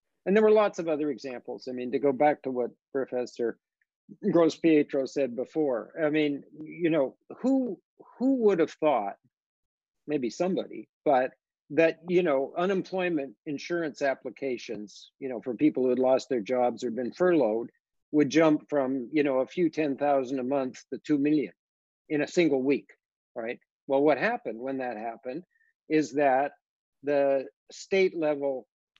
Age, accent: 50-69, American